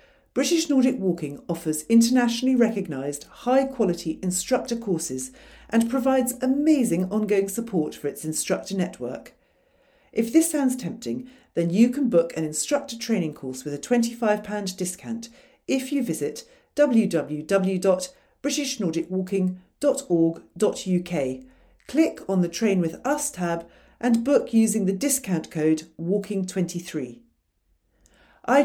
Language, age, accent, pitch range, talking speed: English, 50-69, British, 165-235 Hz, 110 wpm